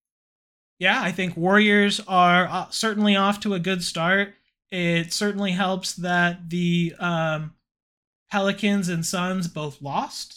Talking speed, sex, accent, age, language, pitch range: 125 wpm, male, American, 20-39, English, 170-195 Hz